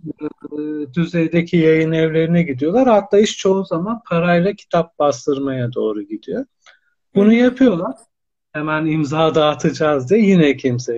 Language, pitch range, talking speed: Turkish, 140-170 Hz, 115 wpm